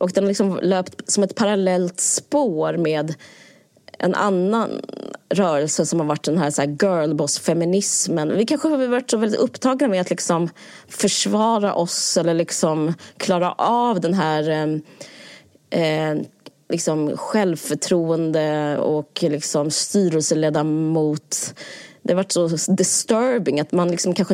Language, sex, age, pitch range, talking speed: Swedish, female, 20-39, 155-195 Hz, 135 wpm